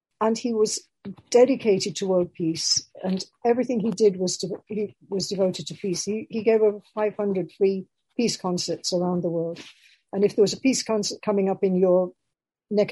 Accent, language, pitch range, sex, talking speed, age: British, English, 175-215 Hz, female, 190 wpm, 60-79